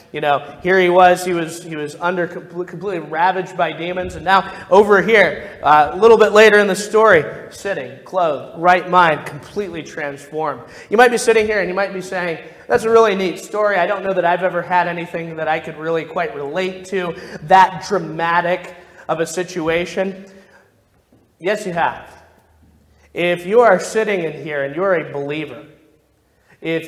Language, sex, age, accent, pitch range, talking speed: English, male, 30-49, American, 155-190 Hz, 180 wpm